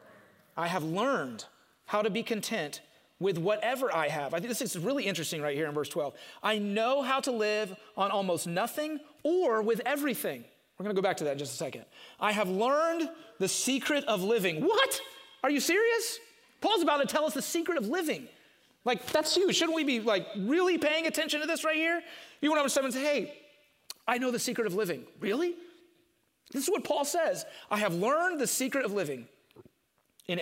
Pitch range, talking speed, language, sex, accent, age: 185-290 Hz, 205 wpm, English, male, American, 30-49